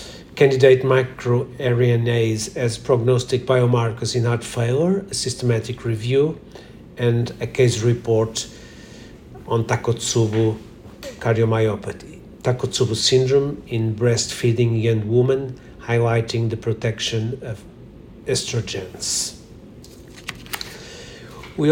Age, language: 50-69, Portuguese